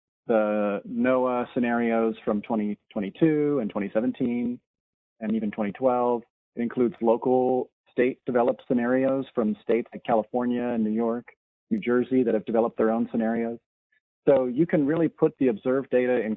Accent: American